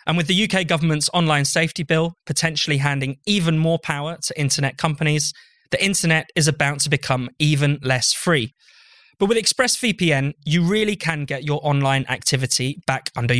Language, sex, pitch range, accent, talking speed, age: English, male, 140-175 Hz, British, 165 wpm, 20-39